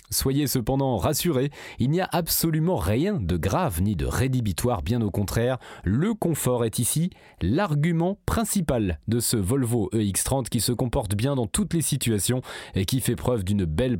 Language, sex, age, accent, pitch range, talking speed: French, male, 30-49, French, 100-165 Hz, 170 wpm